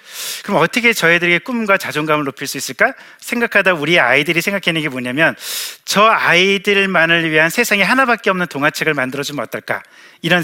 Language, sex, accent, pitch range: Korean, male, native, 155-205 Hz